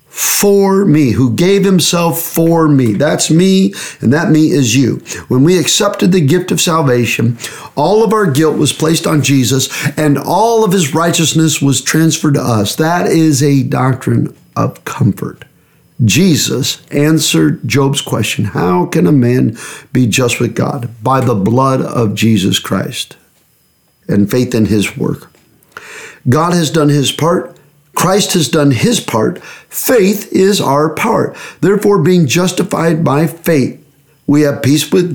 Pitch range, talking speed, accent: 135-175 Hz, 155 wpm, American